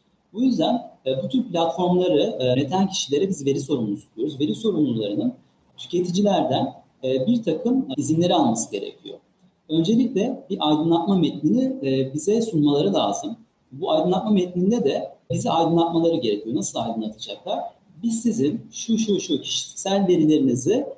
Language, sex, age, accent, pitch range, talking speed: Turkish, male, 40-59, native, 150-230 Hz, 120 wpm